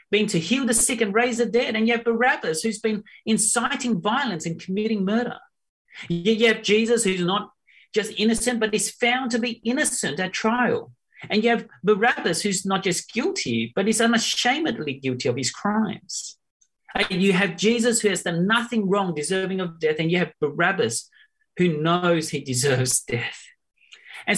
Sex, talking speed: male, 175 wpm